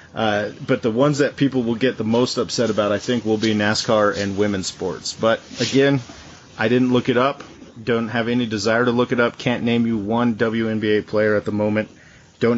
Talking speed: 215 wpm